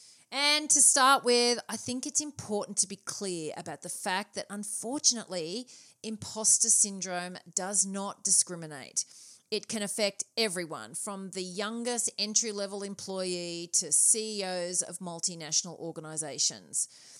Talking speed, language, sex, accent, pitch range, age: 120 wpm, English, female, Australian, 180-230 Hz, 40-59